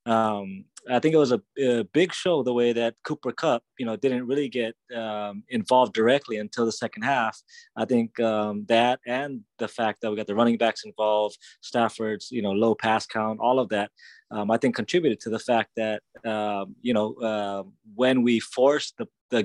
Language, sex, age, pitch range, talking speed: English, male, 20-39, 105-120 Hz, 205 wpm